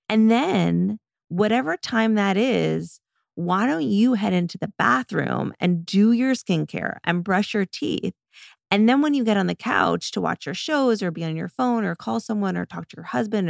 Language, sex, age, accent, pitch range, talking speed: English, female, 20-39, American, 160-220 Hz, 205 wpm